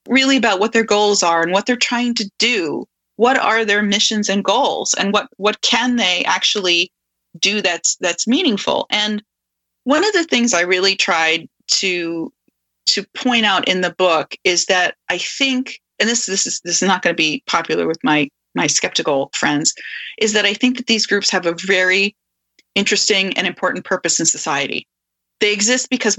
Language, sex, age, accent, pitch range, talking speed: English, female, 30-49, American, 185-230 Hz, 190 wpm